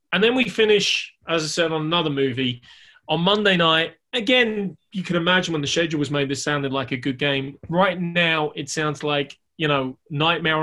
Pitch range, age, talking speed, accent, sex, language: 130-165 Hz, 20-39, 205 wpm, British, male, English